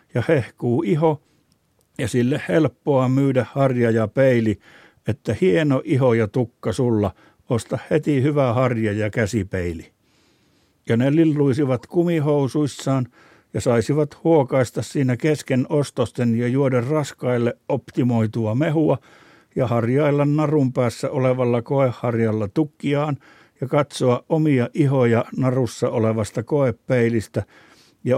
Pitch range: 120-150 Hz